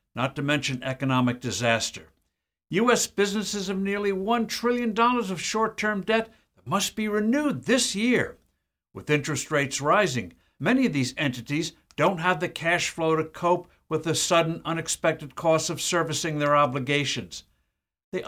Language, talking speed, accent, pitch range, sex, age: English, 150 wpm, American, 135-180 Hz, male, 60-79